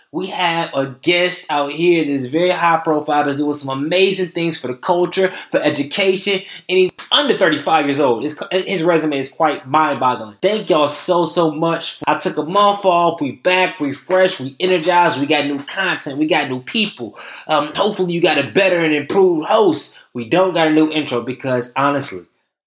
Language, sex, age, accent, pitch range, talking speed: English, male, 20-39, American, 135-180 Hz, 195 wpm